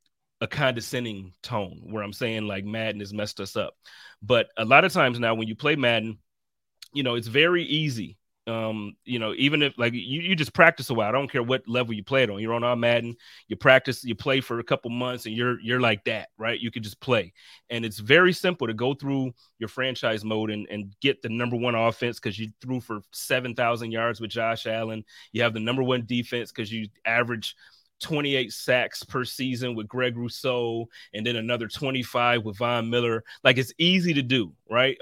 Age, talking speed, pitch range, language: 30-49, 215 wpm, 110-130 Hz, English